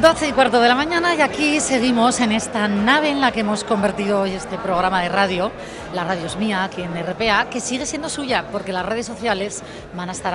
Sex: female